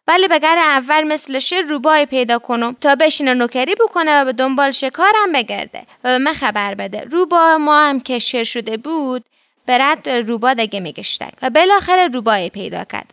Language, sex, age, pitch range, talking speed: Persian, female, 20-39, 240-315 Hz, 170 wpm